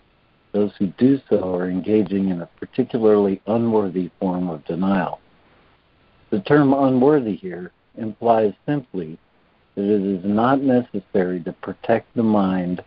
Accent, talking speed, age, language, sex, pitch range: American, 130 wpm, 60-79, English, male, 90-110 Hz